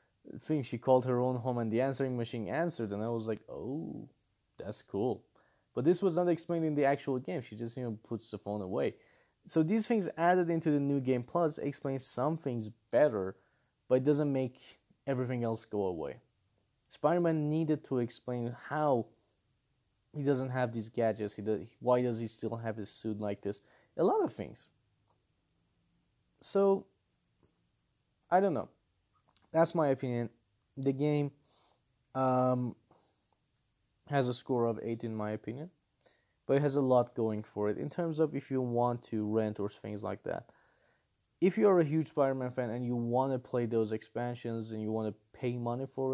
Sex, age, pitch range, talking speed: male, 30-49, 110-140 Hz, 180 wpm